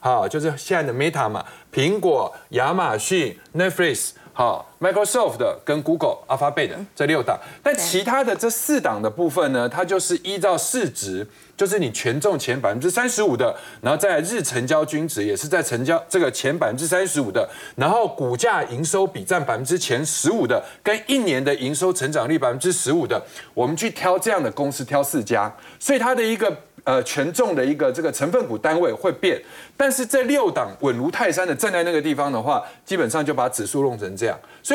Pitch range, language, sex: 150-235 Hz, Chinese, male